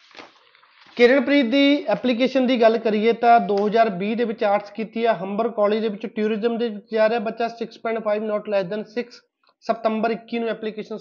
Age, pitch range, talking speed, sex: 30-49, 210-255 Hz, 165 wpm, male